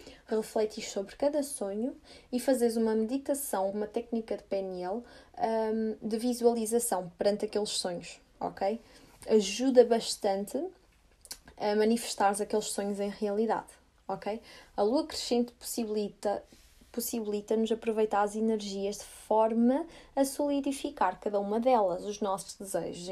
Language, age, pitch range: Portuguese, 20-39, 200-235 Hz